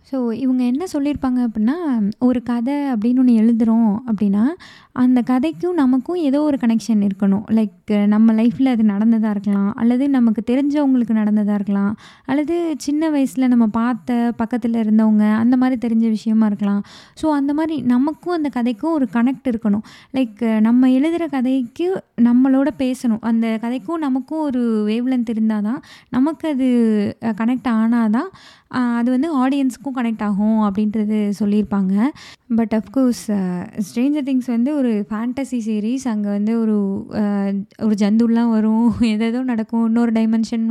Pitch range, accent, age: 220-255 Hz, native, 20-39